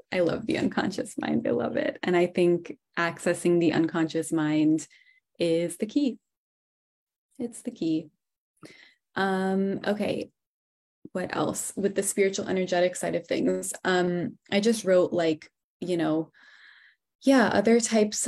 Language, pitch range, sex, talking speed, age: English, 165-200 Hz, female, 140 wpm, 20-39